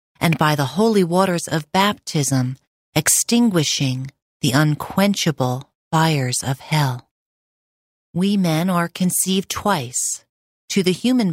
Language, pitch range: English, 145-200 Hz